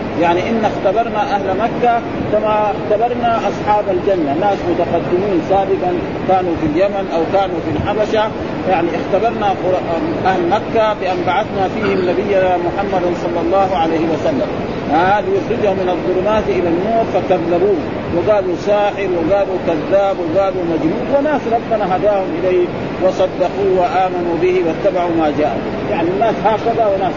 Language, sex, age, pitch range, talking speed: Arabic, male, 40-59, 180-225 Hz, 135 wpm